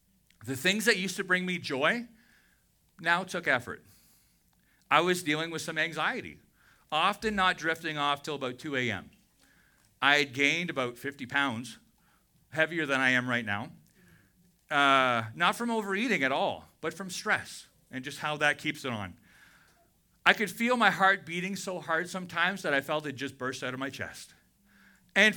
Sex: male